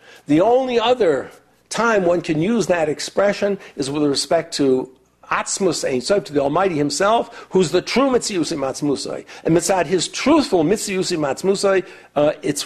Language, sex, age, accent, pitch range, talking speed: English, male, 60-79, American, 140-180 Hz, 145 wpm